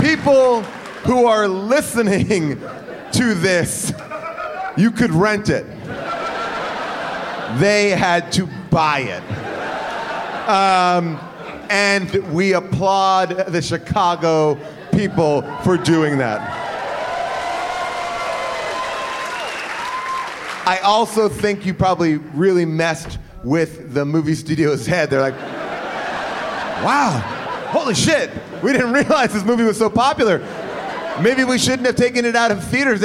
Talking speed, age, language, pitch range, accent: 105 wpm, 30-49, English, 155-230 Hz, American